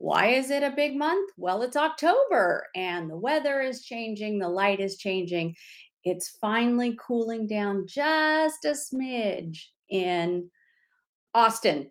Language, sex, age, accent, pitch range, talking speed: English, female, 40-59, American, 200-275 Hz, 135 wpm